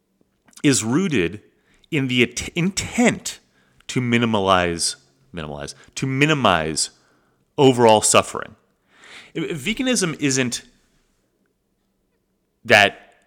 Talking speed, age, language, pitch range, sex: 70 wpm, 30-49, English, 100-140 Hz, male